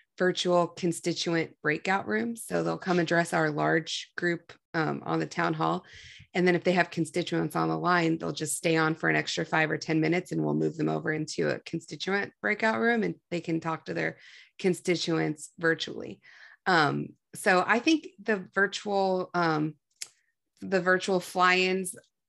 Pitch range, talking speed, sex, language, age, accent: 160-190 Hz, 170 wpm, female, English, 30-49, American